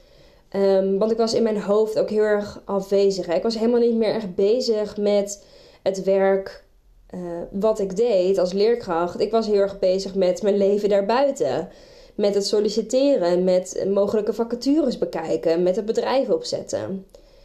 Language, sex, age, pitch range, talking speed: Dutch, female, 20-39, 195-225 Hz, 160 wpm